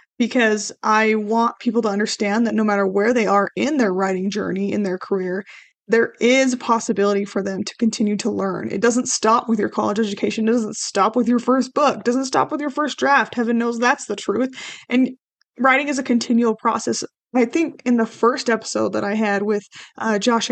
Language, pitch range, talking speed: English, 210-255 Hz, 215 wpm